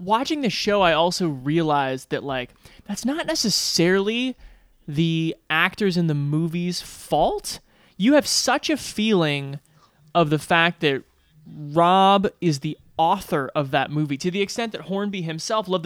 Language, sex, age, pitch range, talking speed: English, male, 20-39, 150-195 Hz, 150 wpm